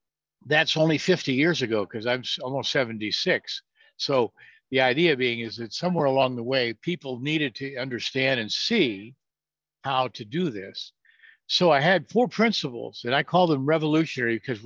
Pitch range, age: 120-160 Hz, 60-79